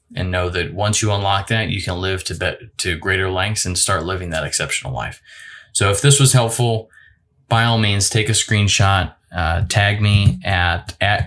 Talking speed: 190 wpm